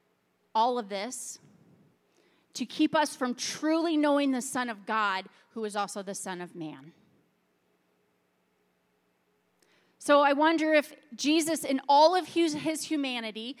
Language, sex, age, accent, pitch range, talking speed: English, female, 30-49, American, 215-300 Hz, 130 wpm